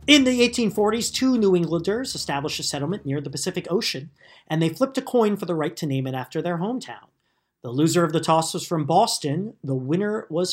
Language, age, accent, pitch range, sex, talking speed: English, 40-59, American, 155-220 Hz, male, 215 wpm